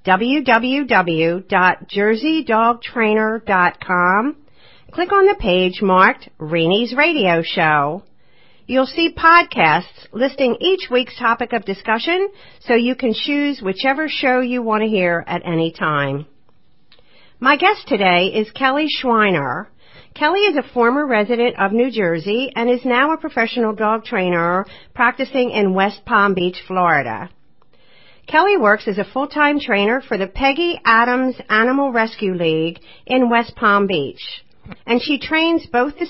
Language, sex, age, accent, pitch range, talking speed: English, female, 50-69, American, 190-270 Hz, 135 wpm